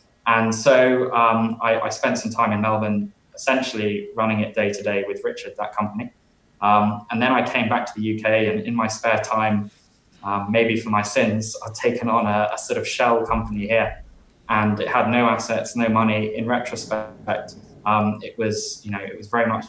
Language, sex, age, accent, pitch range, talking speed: English, male, 20-39, British, 105-115 Hz, 205 wpm